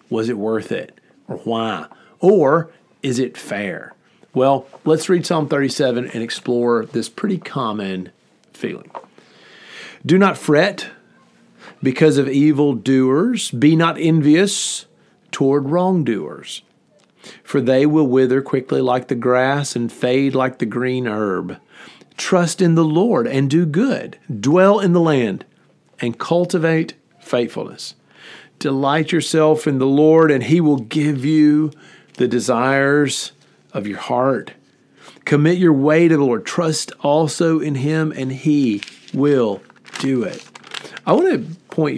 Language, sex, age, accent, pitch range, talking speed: English, male, 40-59, American, 125-165 Hz, 135 wpm